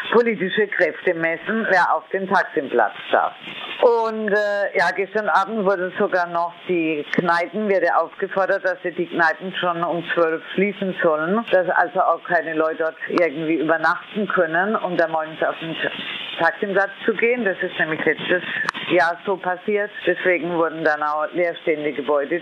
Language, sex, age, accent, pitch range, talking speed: German, female, 50-69, German, 160-195 Hz, 160 wpm